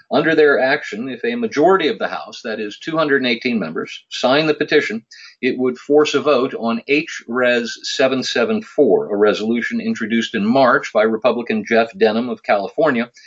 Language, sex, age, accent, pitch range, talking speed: English, male, 50-69, American, 115-160 Hz, 165 wpm